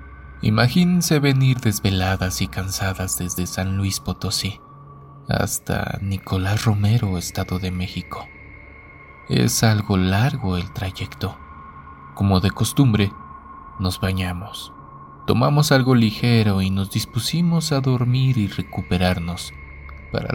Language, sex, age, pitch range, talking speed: Spanish, male, 30-49, 90-125 Hz, 105 wpm